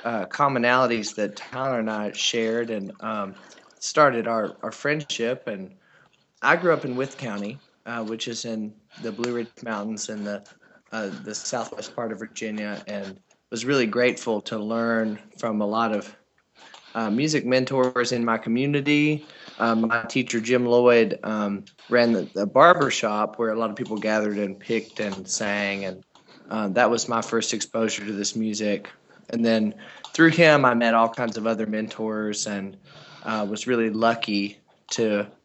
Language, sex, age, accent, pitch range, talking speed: English, male, 20-39, American, 105-125 Hz, 170 wpm